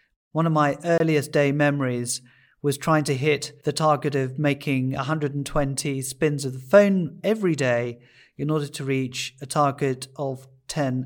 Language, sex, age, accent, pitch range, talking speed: English, male, 40-59, British, 135-160 Hz, 155 wpm